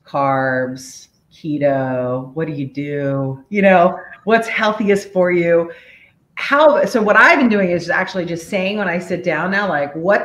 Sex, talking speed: female, 170 wpm